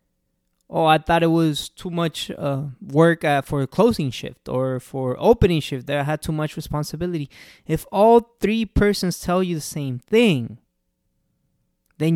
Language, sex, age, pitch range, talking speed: English, male, 20-39, 125-170 Hz, 170 wpm